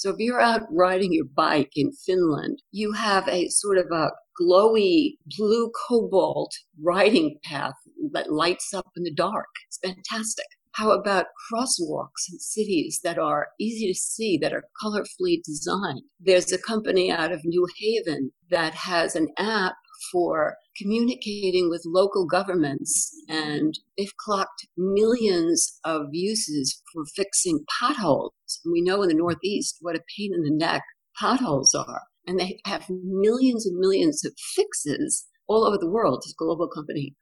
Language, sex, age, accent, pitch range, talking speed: English, female, 50-69, American, 175-250 Hz, 155 wpm